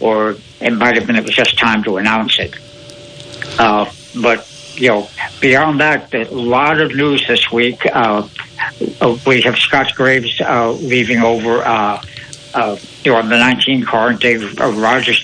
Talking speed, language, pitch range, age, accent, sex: 160 wpm, English, 115-130 Hz, 60-79, American, male